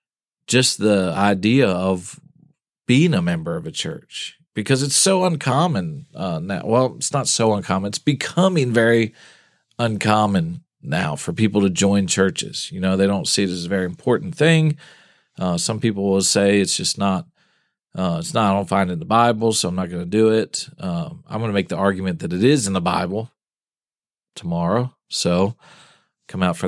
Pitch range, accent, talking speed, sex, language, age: 100-140 Hz, American, 190 wpm, male, English, 40-59